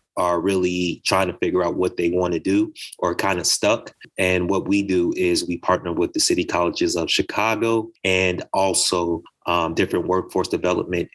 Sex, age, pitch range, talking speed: male, 30-49, 85-100 Hz, 185 wpm